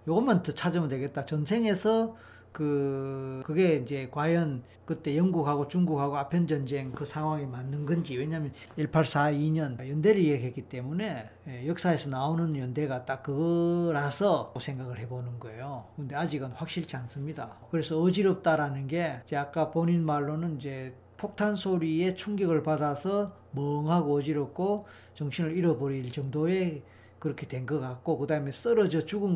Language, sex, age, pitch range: Korean, male, 40-59, 140-180 Hz